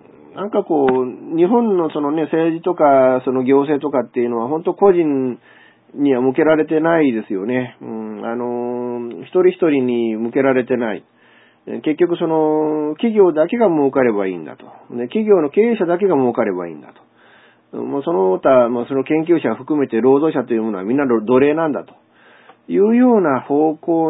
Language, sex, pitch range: Japanese, male, 110-155 Hz